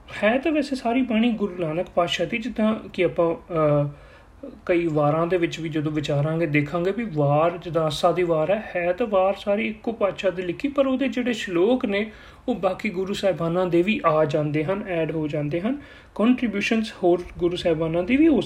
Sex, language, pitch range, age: male, Punjabi, 155-210 Hz, 30-49